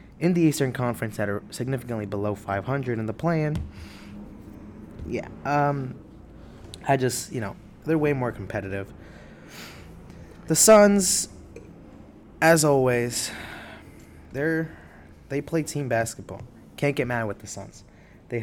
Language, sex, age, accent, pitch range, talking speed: English, male, 20-39, American, 100-120 Hz, 125 wpm